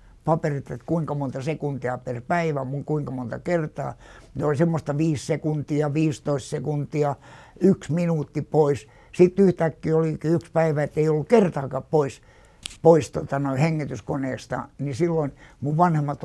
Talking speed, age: 145 wpm, 60-79